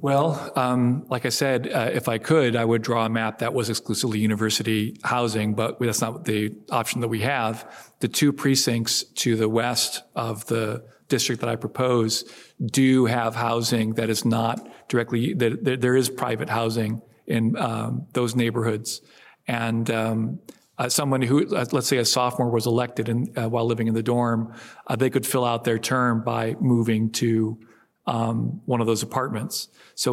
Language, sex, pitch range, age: English, male, 115-130 Hz, 40-59